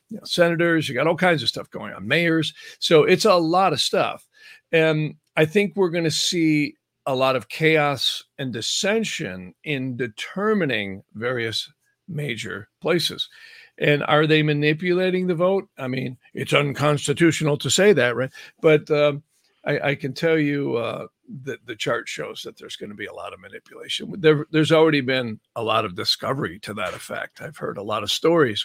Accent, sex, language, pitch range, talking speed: American, male, English, 120-165 Hz, 180 wpm